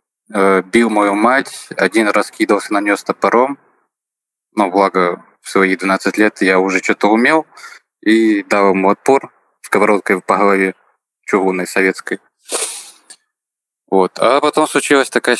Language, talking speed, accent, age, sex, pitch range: Russian, 130 wpm, native, 20-39, male, 95-125 Hz